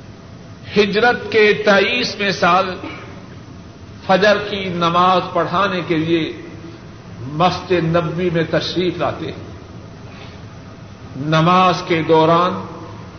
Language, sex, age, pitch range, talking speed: Urdu, male, 50-69, 155-200 Hz, 90 wpm